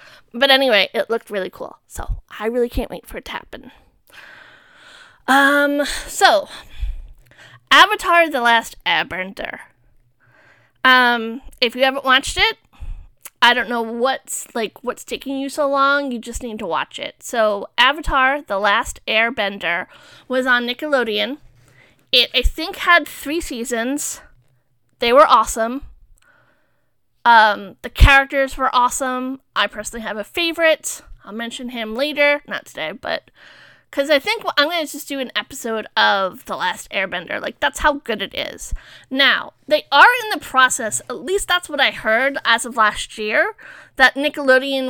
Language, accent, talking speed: English, American, 155 wpm